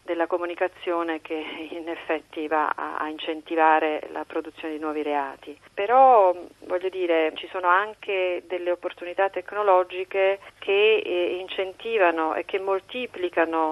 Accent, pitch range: native, 160-185 Hz